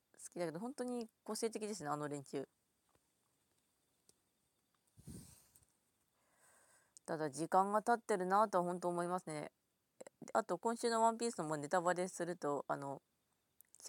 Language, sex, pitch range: Japanese, female, 150-220 Hz